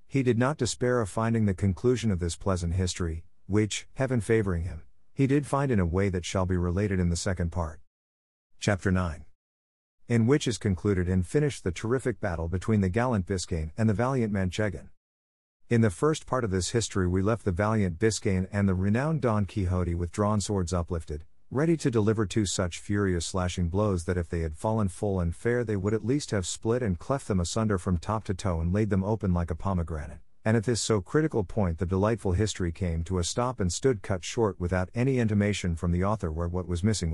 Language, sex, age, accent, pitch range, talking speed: English, male, 50-69, American, 90-110 Hz, 215 wpm